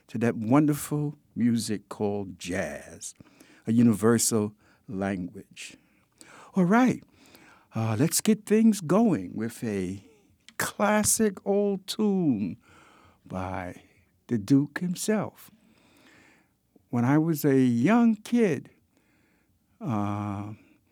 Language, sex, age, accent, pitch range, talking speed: English, male, 60-79, American, 100-130 Hz, 90 wpm